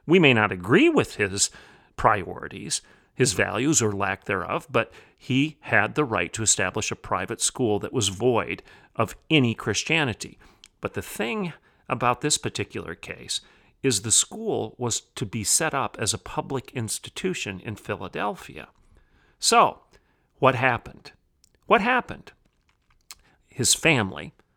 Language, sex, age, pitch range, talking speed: English, male, 40-59, 110-140 Hz, 135 wpm